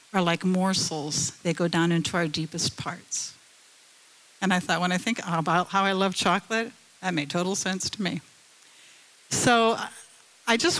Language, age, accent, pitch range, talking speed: English, 50-69, American, 170-210 Hz, 165 wpm